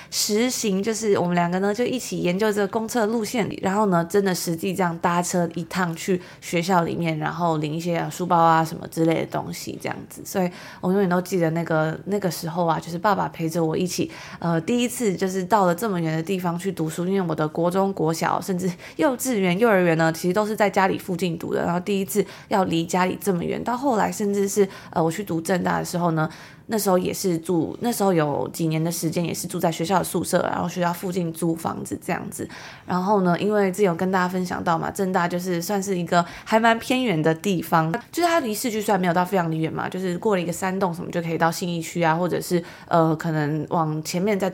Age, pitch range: 20-39, 165-195 Hz